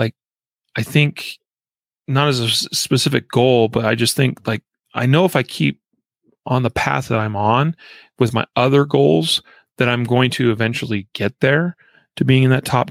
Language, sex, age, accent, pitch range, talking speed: English, male, 30-49, American, 110-130 Hz, 180 wpm